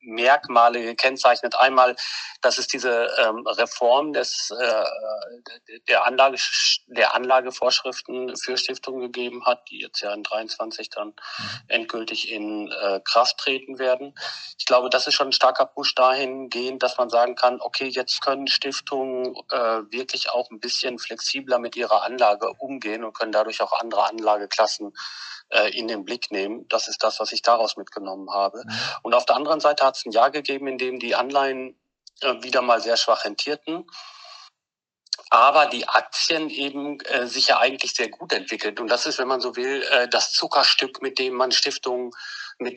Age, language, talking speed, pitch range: 40-59, German, 165 wpm, 110-130 Hz